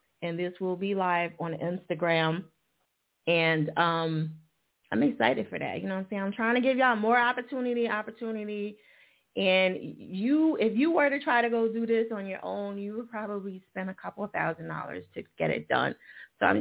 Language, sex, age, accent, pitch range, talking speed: English, female, 30-49, American, 160-205 Hz, 200 wpm